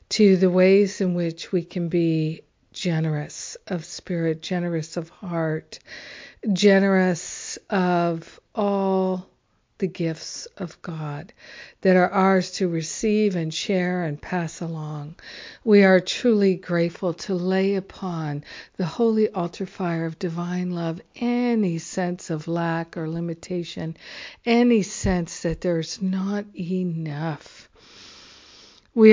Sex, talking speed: female, 120 wpm